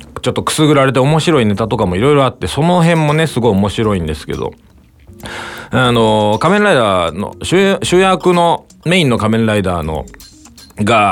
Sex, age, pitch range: male, 40-59, 95-145 Hz